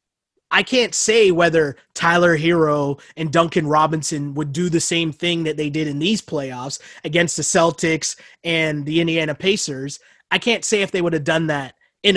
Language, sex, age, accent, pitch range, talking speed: English, male, 20-39, American, 155-195 Hz, 180 wpm